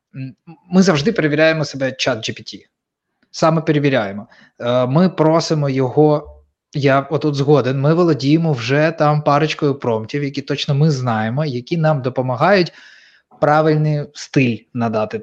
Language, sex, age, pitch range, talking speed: Ukrainian, male, 20-39, 125-155 Hz, 120 wpm